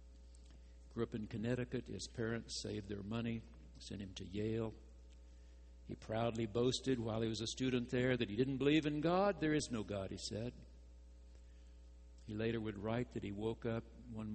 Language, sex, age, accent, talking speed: English, male, 60-79, American, 180 wpm